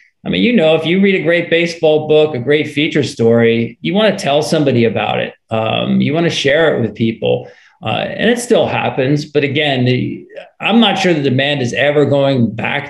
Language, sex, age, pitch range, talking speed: English, male, 40-59, 125-165 Hz, 215 wpm